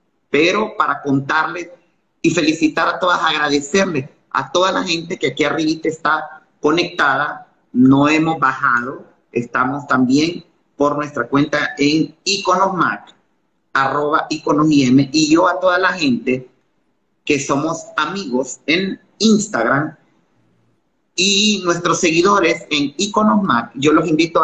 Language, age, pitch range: Spanish, 40-59, 135-180 Hz